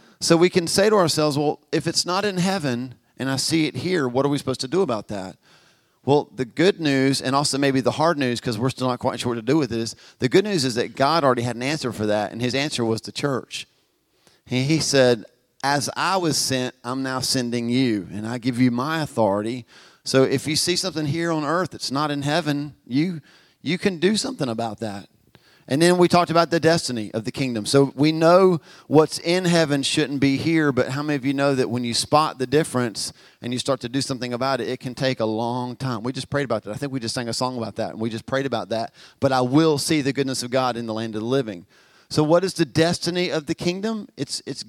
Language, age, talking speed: English, 40-59, 255 wpm